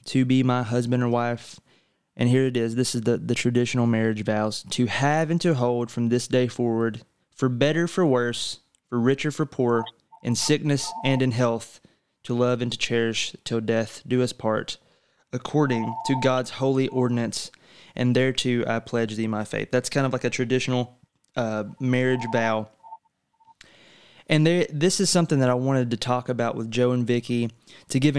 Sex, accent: male, American